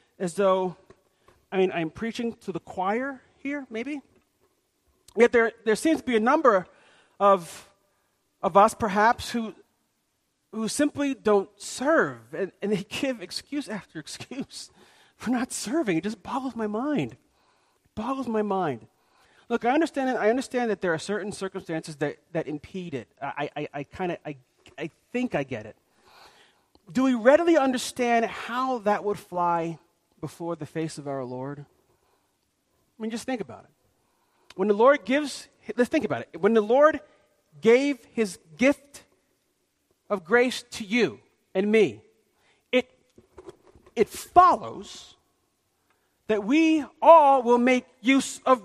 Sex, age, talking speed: male, 40-59, 150 wpm